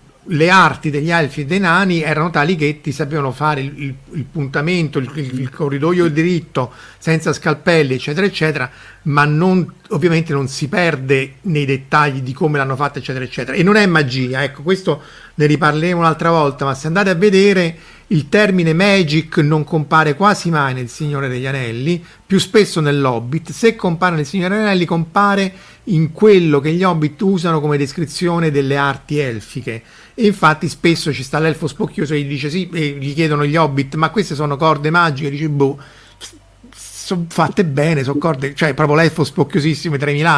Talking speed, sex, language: 180 wpm, male, Italian